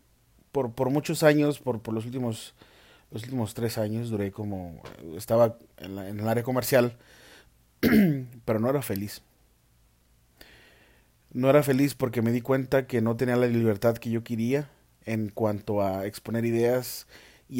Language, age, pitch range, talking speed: Spanish, 30-49, 115-135 Hz, 155 wpm